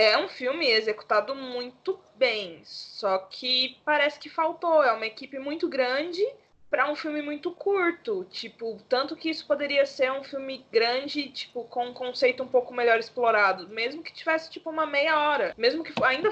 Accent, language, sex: Brazilian, Portuguese, female